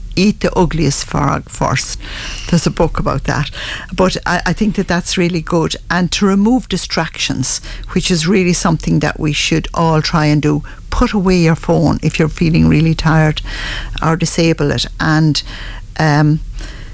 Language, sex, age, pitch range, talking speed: English, female, 50-69, 145-175 Hz, 165 wpm